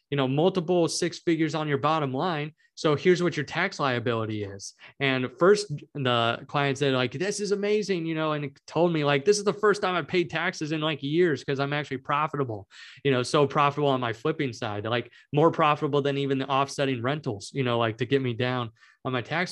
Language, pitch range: English, 135-165 Hz